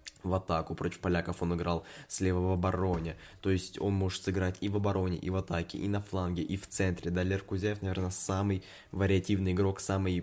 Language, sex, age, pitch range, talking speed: Russian, male, 20-39, 90-110 Hz, 200 wpm